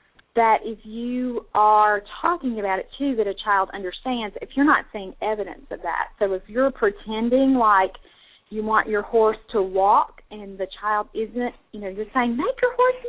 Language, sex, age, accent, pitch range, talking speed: English, female, 40-59, American, 225-330 Hz, 190 wpm